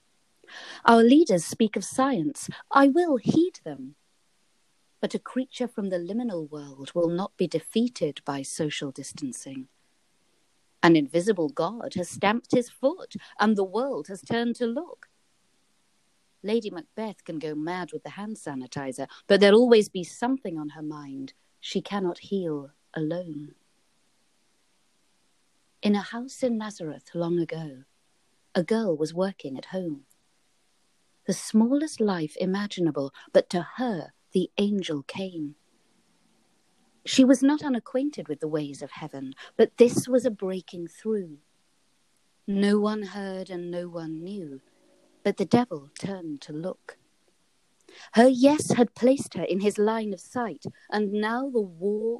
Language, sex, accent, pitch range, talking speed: English, female, British, 160-230 Hz, 140 wpm